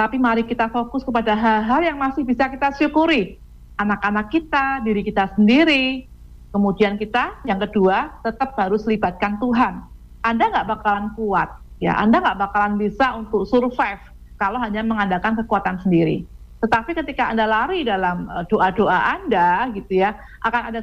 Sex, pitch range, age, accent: female, 205-255 Hz, 50-69, Indonesian